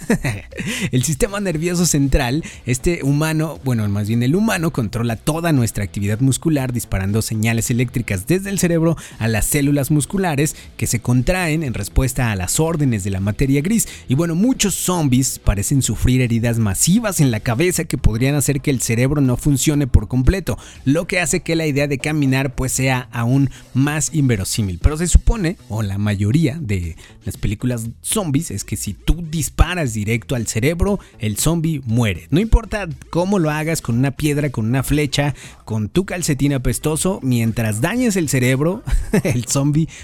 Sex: male